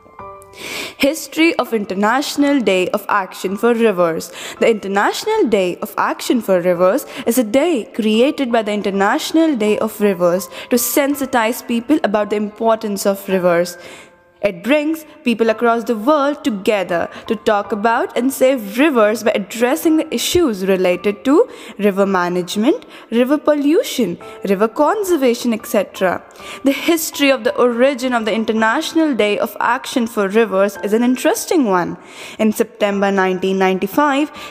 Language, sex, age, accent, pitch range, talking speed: English, female, 10-29, Indian, 195-280 Hz, 135 wpm